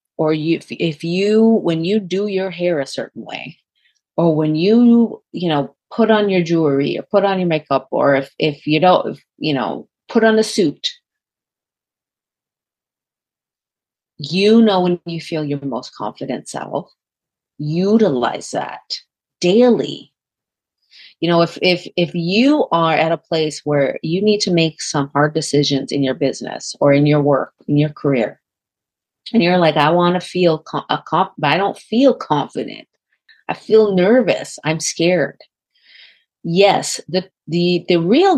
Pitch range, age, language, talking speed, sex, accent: 150-195 Hz, 30-49, English, 165 wpm, female, American